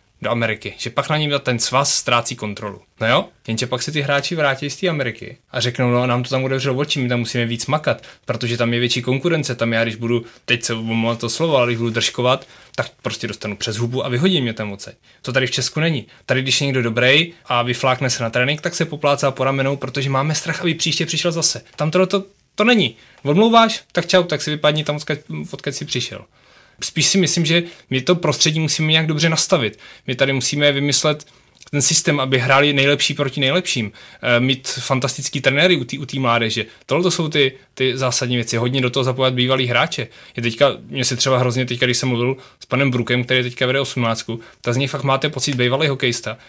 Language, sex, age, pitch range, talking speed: Czech, male, 20-39, 120-150 Hz, 220 wpm